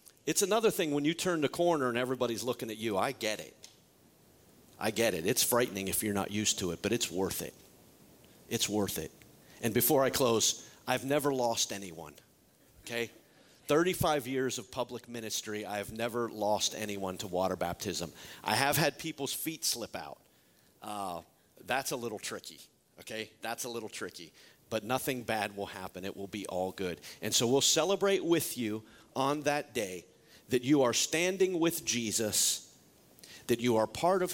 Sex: male